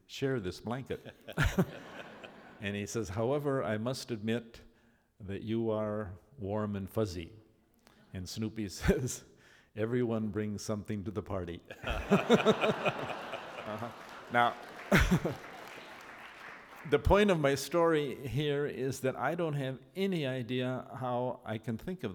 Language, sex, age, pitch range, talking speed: English, male, 50-69, 105-130 Hz, 120 wpm